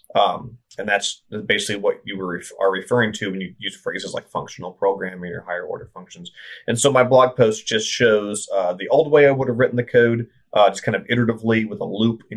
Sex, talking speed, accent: male, 225 wpm, American